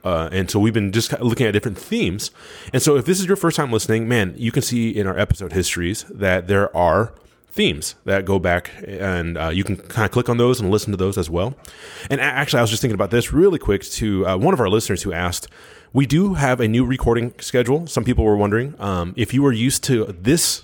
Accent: American